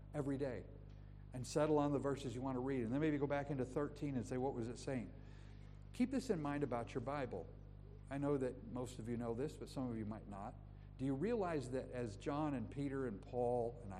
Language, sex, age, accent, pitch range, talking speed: English, male, 50-69, American, 115-150 Hz, 240 wpm